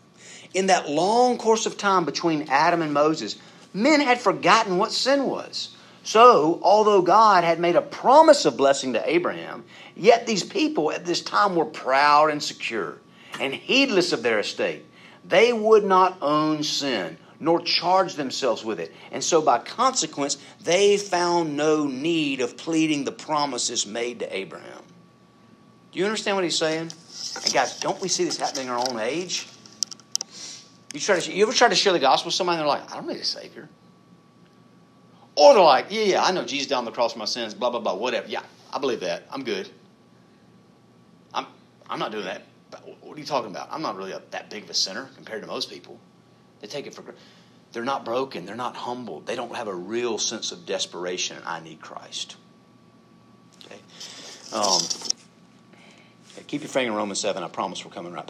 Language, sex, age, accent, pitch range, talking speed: English, male, 50-69, American, 145-220 Hz, 190 wpm